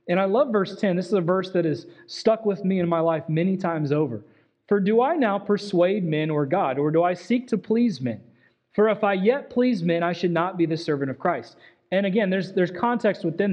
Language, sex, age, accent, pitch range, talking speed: English, male, 30-49, American, 175-230 Hz, 245 wpm